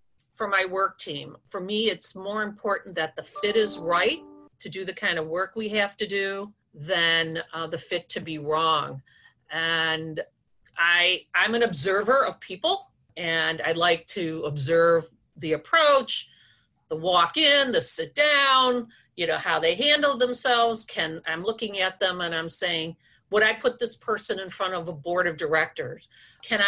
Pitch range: 160-220 Hz